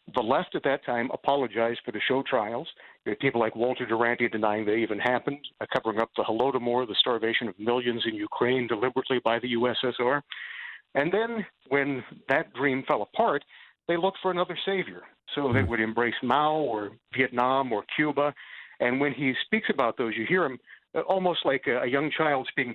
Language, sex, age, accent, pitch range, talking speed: English, male, 50-69, American, 120-150 Hz, 185 wpm